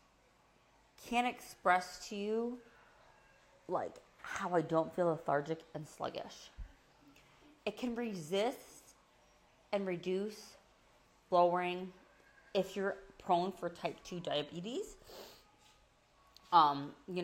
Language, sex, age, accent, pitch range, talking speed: English, female, 30-49, American, 160-200 Hz, 95 wpm